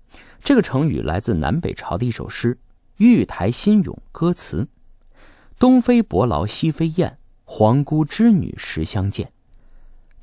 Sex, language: male, Chinese